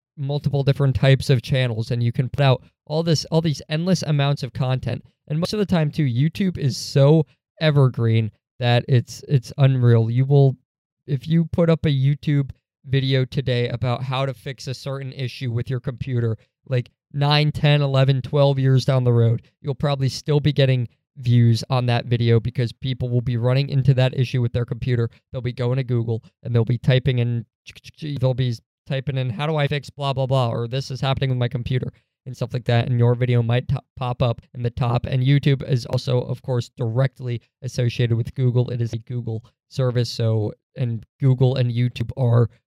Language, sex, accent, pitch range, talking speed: English, male, American, 120-140 Hz, 200 wpm